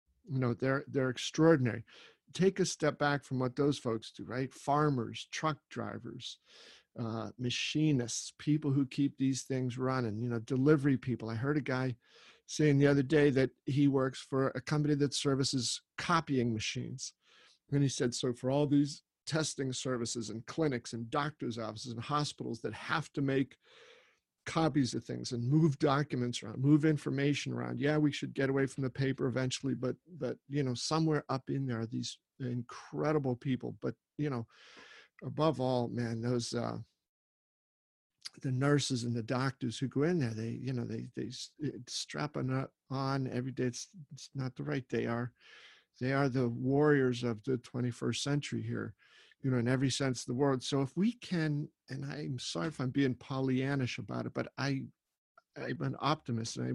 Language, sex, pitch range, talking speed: English, male, 120-145 Hz, 180 wpm